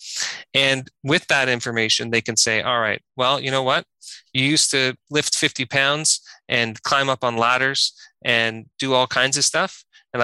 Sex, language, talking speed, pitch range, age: male, English, 180 wpm, 115-140 Hz, 30-49